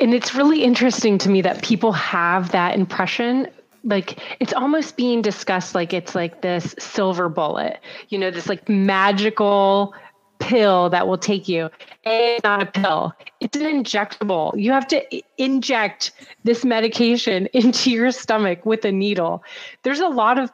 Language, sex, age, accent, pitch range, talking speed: English, female, 30-49, American, 195-250 Hz, 160 wpm